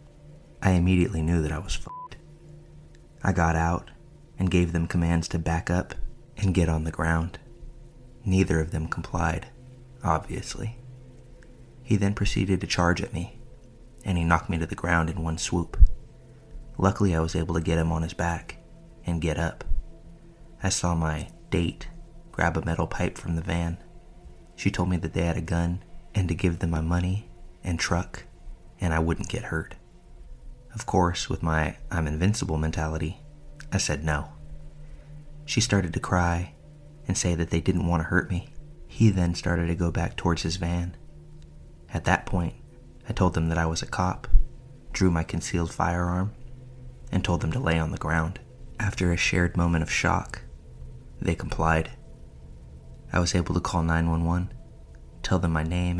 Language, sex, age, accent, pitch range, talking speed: English, male, 30-49, American, 80-95 Hz, 175 wpm